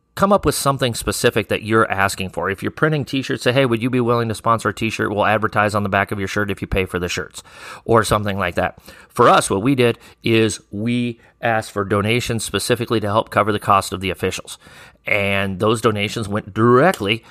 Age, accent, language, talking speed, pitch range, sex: 40-59, American, English, 225 wpm, 100-125 Hz, male